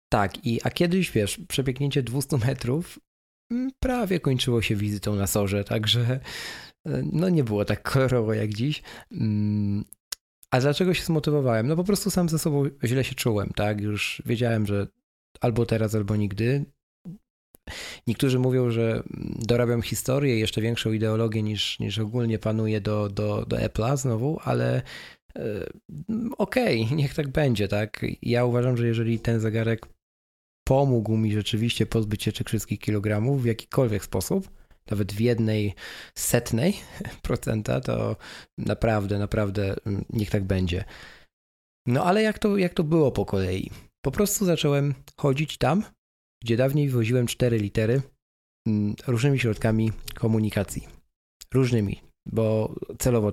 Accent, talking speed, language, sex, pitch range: native, 135 wpm, Polish, male, 105-135 Hz